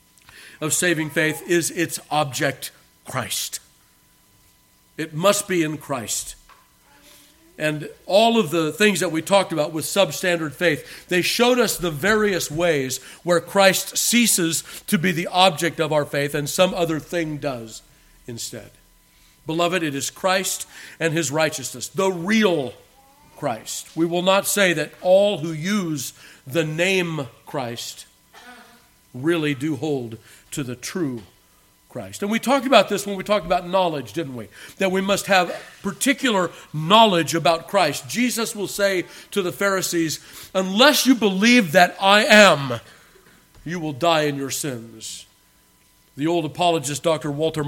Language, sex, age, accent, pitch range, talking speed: English, male, 50-69, American, 145-190 Hz, 145 wpm